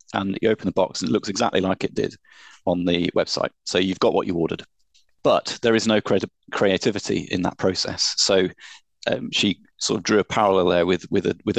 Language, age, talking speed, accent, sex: English, 30-49, 215 wpm, British, male